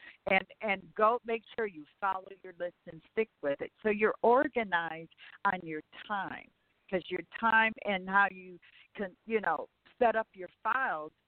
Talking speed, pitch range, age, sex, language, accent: 170 wpm, 165-225 Hz, 60-79, female, English, American